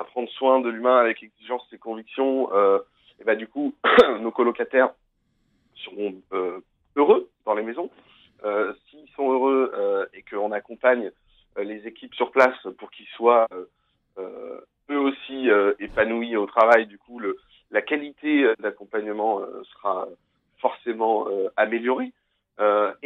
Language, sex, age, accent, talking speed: French, male, 40-59, French, 155 wpm